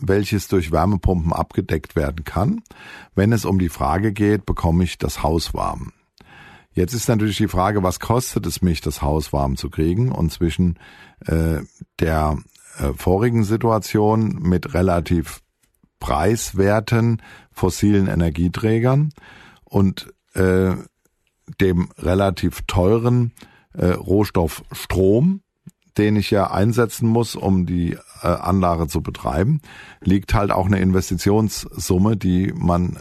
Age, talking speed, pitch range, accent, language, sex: 50-69, 125 wpm, 85-105 Hz, German, German, male